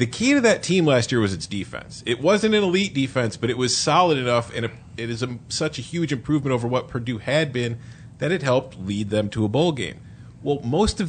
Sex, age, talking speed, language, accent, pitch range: male, 30-49, 250 wpm, English, American, 105-130 Hz